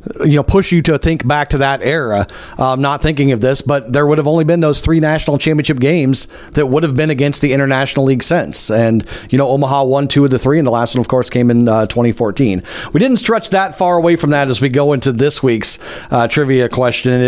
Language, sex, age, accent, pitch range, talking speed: English, male, 40-59, American, 130-160 Hz, 245 wpm